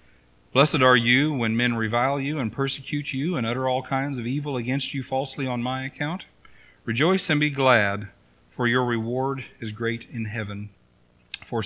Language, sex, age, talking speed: English, male, 40-59, 175 wpm